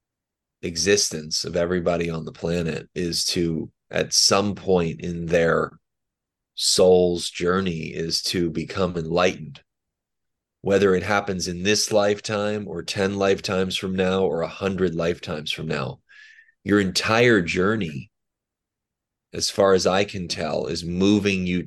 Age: 30-49